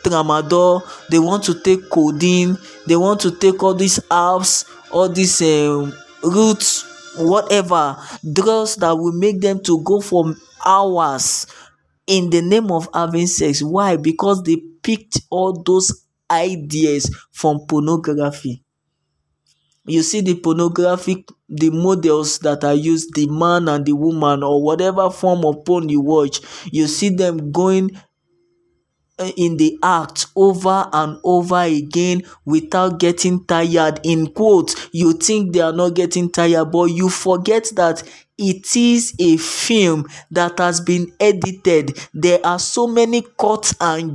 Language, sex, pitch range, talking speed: English, male, 160-195 Hz, 140 wpm